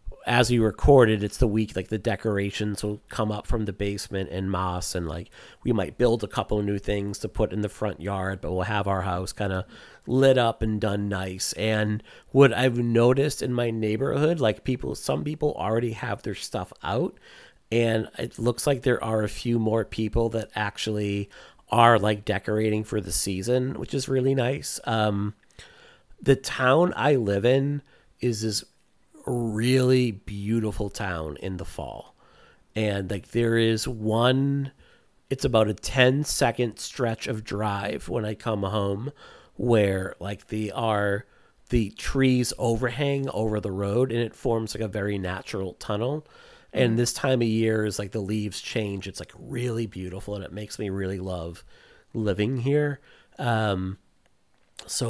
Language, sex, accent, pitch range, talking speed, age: English, male, American, 100-120 Hz, 170 wpm, 40-59